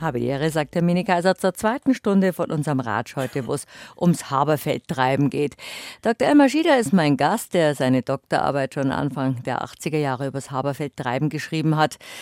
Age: 50-69